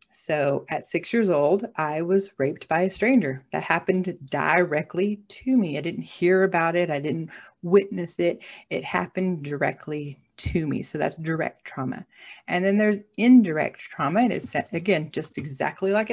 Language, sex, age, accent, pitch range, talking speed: English, female, 40-59, American, 165-210 Hz, 165 wpm